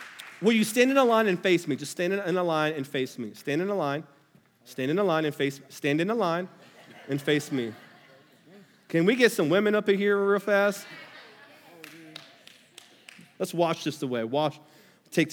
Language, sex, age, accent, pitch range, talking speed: English, male, 30-49, American, 175-265 Hz, 205 wpm